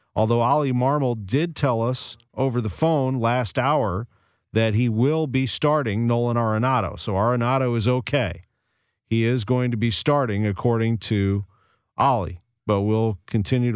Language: English